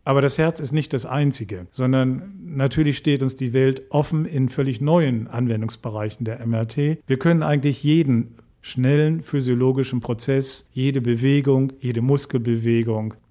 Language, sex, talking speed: German, male, 140 wpm